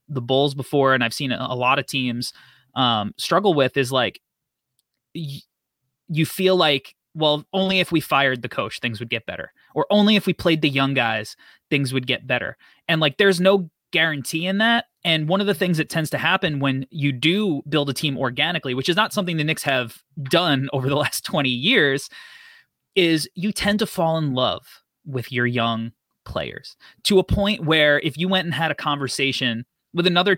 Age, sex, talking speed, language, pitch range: 20-39, male, 200 wpm, English, 135-185 Hz